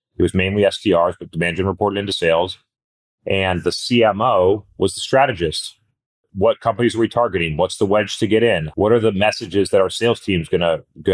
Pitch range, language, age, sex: 90-110 Hz, English, 30-49, male